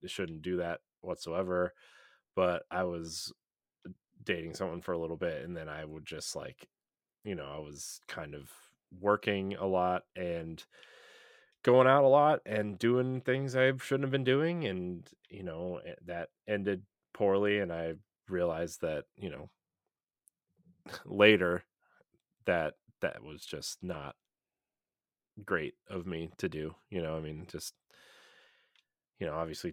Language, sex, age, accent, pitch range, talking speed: English, male, 30-49, American, 85-105 Hz, 145 wpm